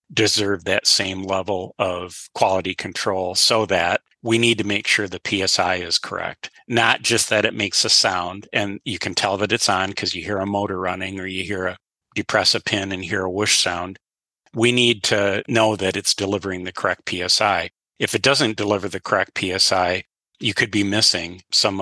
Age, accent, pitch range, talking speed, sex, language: 40-59, American, 95-105 Hz, 200 wpm, male, English